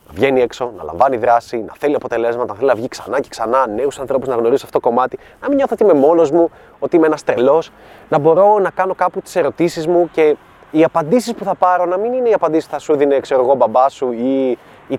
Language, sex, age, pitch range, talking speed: Greek, male, 20-39, 140-195 Hz, 250 wpm